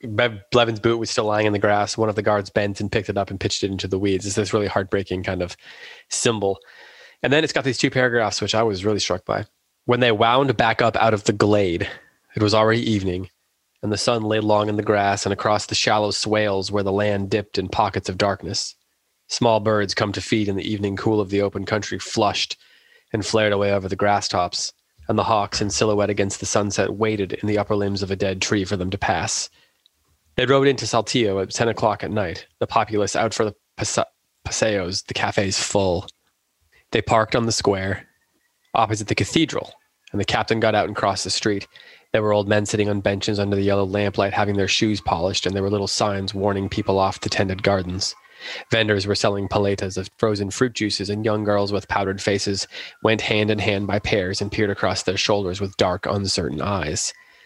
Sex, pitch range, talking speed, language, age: male, 100-110 Hz, 220 wpm, English, 20-39